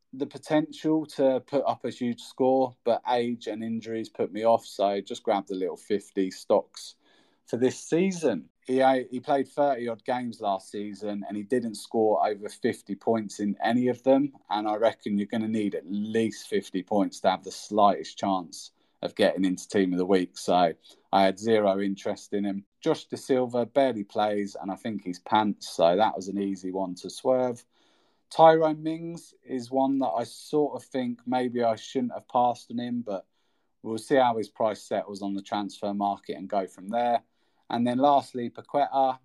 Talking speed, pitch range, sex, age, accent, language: 195 wpm, 105-130 Hz, male, 30-49, British, English